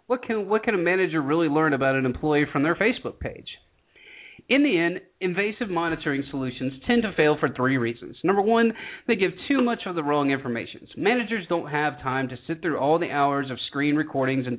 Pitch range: 135-170 Hz